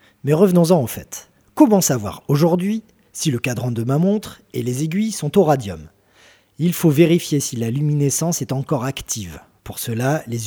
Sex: male